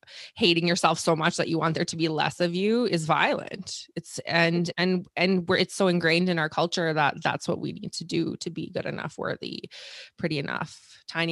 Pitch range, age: 160-185 Hz, 20-39